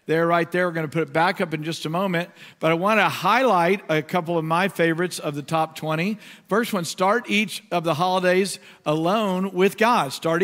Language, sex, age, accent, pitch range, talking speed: English, male, 50-69, American, 170-215 Hz, 215 wpm